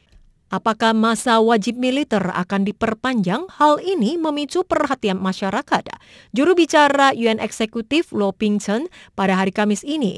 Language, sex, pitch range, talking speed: English, female, 200-265 Hz, 125 wpm